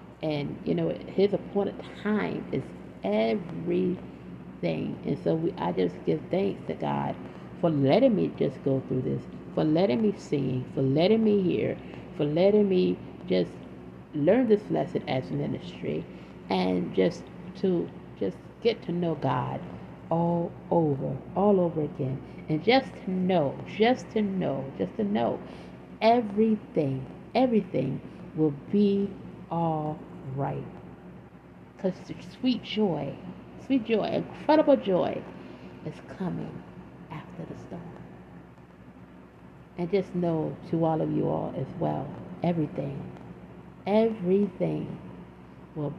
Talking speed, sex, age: 125 wpm, female, 50-69